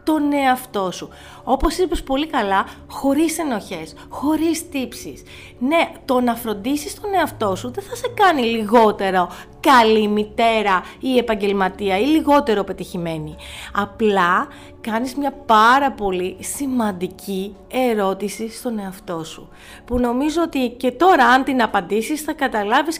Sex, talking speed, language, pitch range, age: female, 130 wpm, Greek, 195-285 Hz, 30-49